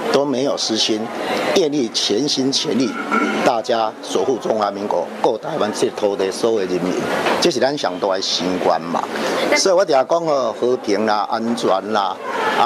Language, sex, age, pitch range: Chinese, male, 50-69, 100-145 Hz